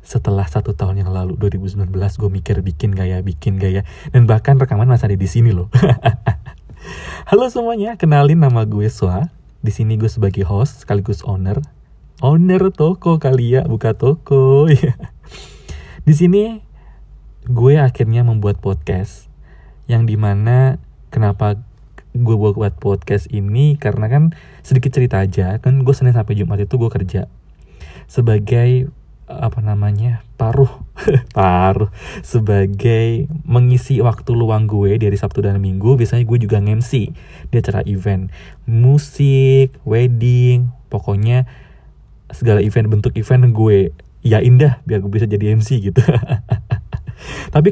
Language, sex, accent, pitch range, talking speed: Indonesian, male, native, 100-130 Hz, 130 wpm